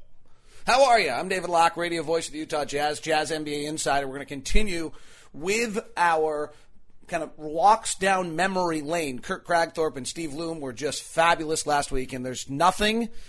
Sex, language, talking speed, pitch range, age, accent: male, English, 180 wpm, 145-175 Hz, 30-49, American